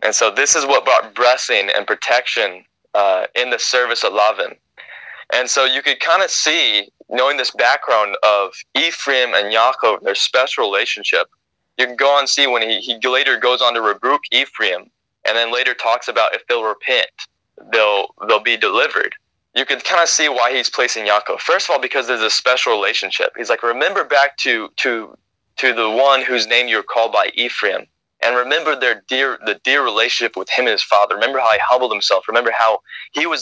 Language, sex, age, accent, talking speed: English, male, 20-39, American, 205 wpm